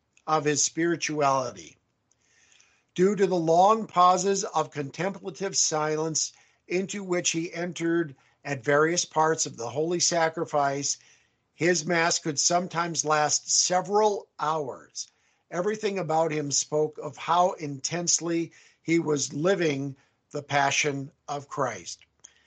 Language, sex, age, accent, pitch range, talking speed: English, male, 50-69, American, 145-175 Hz, 115 wpm